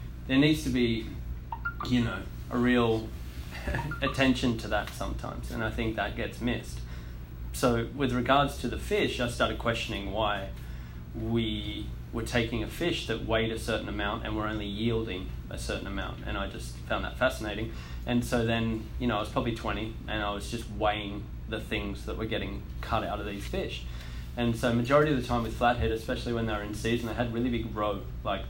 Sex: male